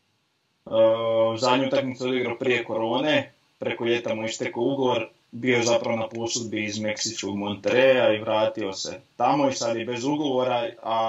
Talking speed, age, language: 160 wpm, 30-49, Croatian